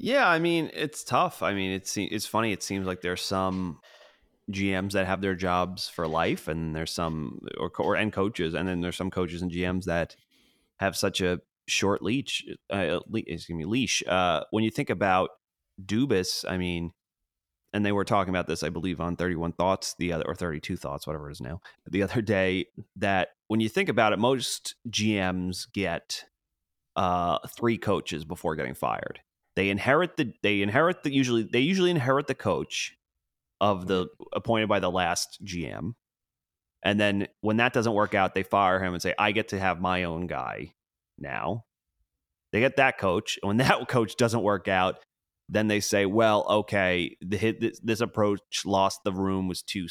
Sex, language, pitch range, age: male, English, 90-105 Hz, 30-49